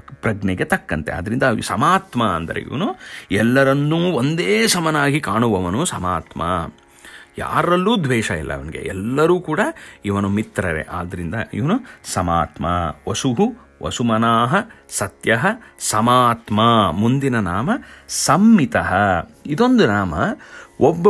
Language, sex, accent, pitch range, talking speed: English, male, Indian, 105-175 Hz, 85 wpm